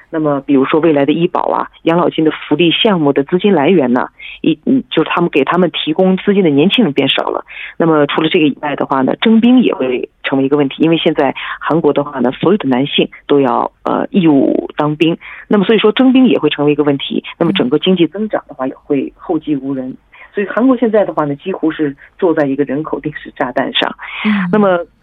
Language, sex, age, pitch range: Korean, female, 40-59, 145-190 Hz